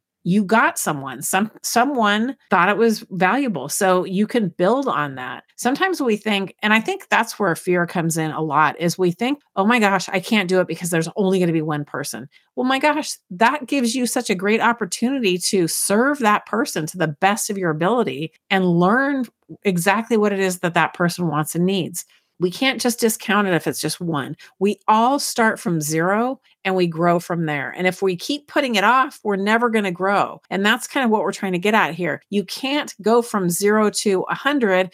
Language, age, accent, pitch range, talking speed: English, 40-59, American, 175-220 Hz, 220 wpm